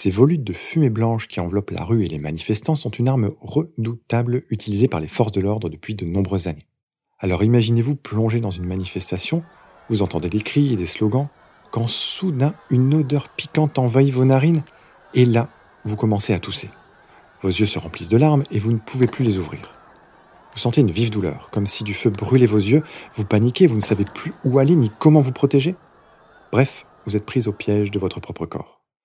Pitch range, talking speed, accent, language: 100-130 Hz, 205 wpm, French, French